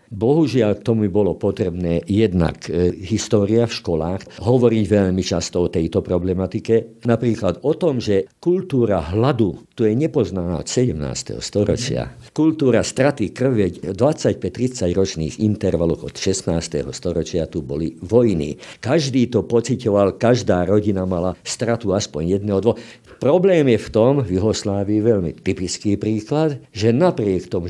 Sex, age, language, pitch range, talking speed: male, 50-69, Slovak, 85-115 Hz, 135 wpm